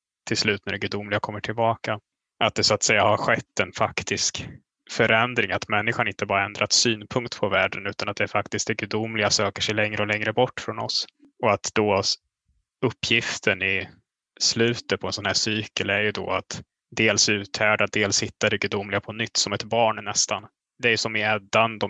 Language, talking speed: Swedish, 200 wpm